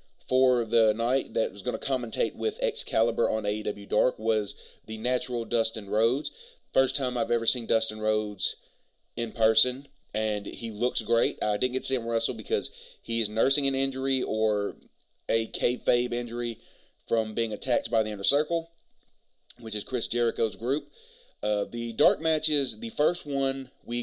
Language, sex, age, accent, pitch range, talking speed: English, male, 30-49, American, 110-135 Hz, 165 wpm